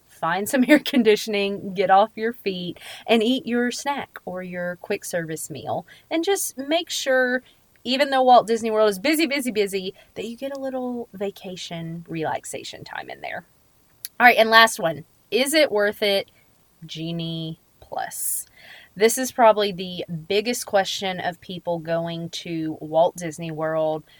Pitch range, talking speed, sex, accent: 175-235 Hz, 160 wpm, female, American